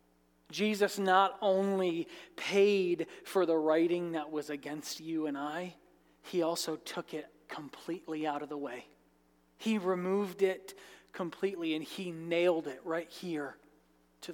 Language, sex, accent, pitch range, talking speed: English, male, American, 130-190 Hz, 140 wpm